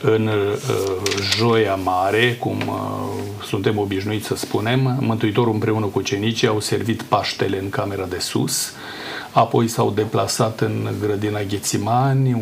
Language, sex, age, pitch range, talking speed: Romanian, male, 40-59, 110-125 Hz, 130 wpm